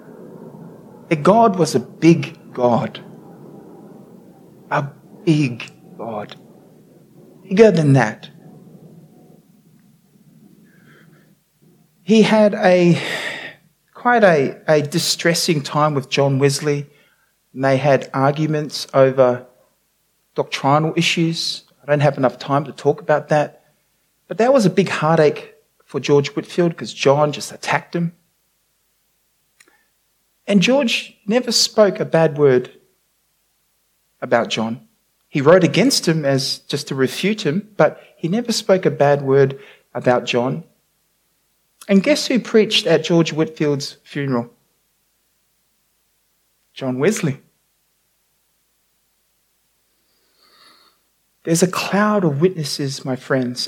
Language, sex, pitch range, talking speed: English, male, 145-195 Hz, 110 wpm